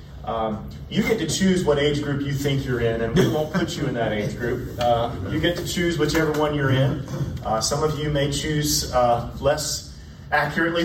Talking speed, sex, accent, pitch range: 215 wpm, male, American, 120-155 Hz